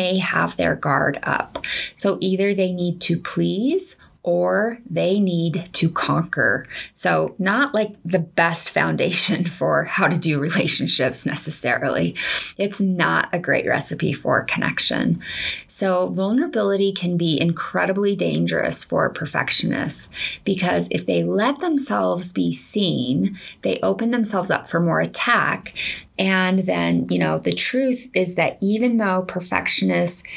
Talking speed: 130 wpm